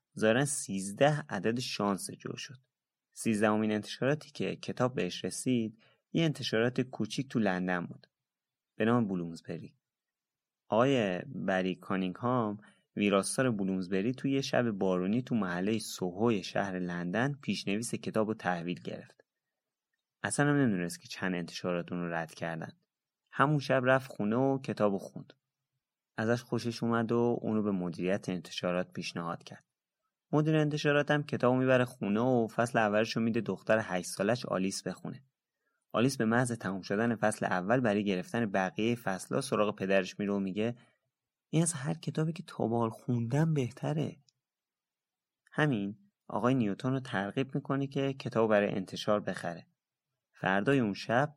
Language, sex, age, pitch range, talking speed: Persian, male, 30-49, 95-130 Hz, 135 wpm